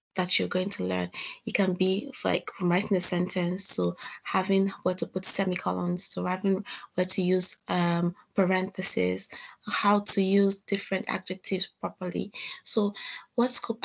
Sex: female